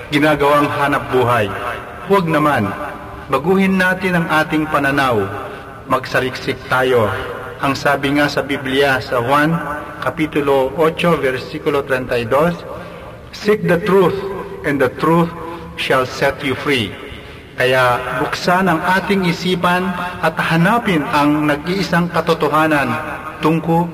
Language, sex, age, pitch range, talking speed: Filipino, male, 50-69, 145-175 Hz, 110 wpm